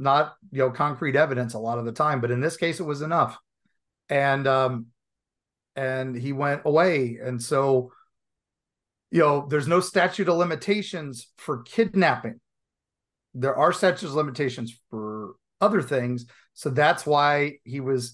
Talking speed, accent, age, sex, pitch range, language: 150 wpm, American, 40-59, male, 125-145 Hz, English